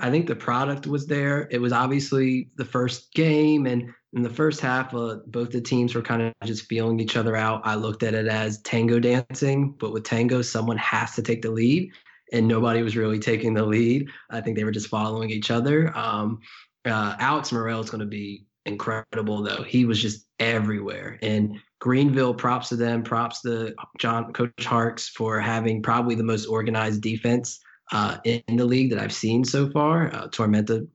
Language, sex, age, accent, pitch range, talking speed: English, male, 20-39, American, 110-120 Hz, 200 wpm